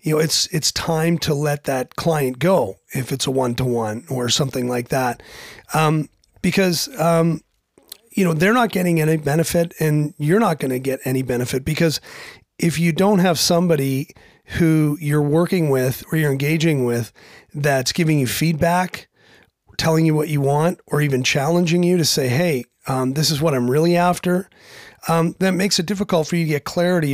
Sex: male